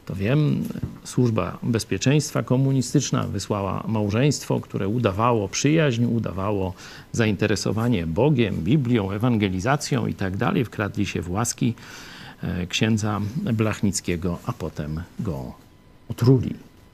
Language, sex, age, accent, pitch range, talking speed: Polish, male, 50-69, native, 100-130 Hz, 95 wpm